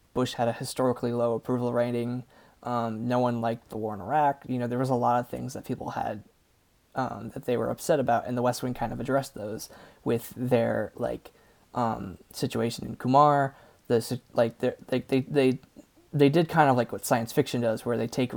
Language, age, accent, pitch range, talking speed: English, 20-39, American, 120-130 Hz, 210 wpm